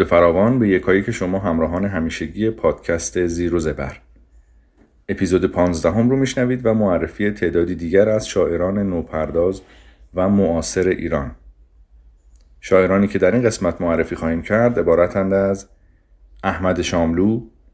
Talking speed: 125 wpm